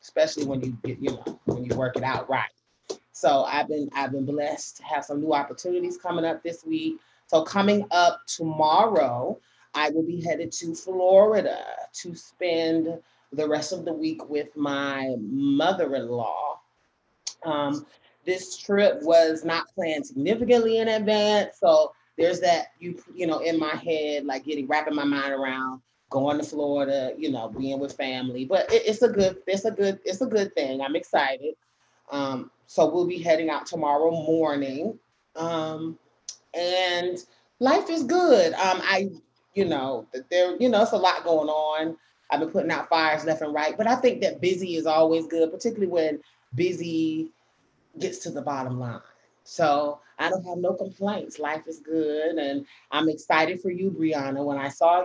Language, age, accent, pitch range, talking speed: English, 30-49, American, 145-185 Hz, 170 wpm